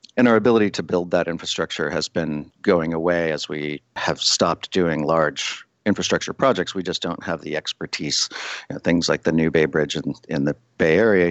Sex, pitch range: male, 80-90 Hz